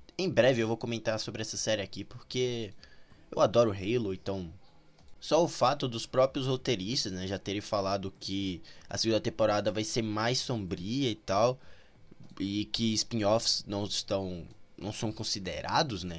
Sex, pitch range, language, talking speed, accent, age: male, 105-135 Hz, Portuguese, 155 wpm, Brazilian, 20-39